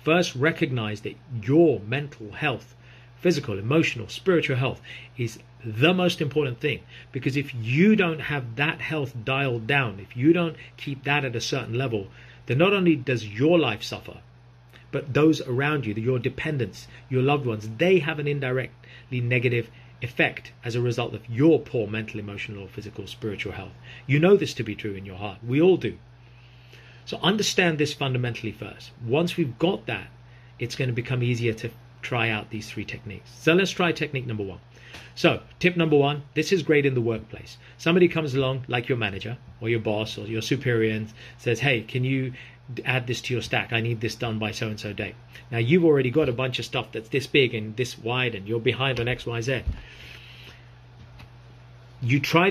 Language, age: English, 40-59